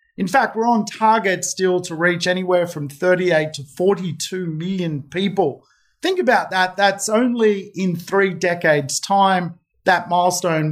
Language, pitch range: English, 155-200 Hz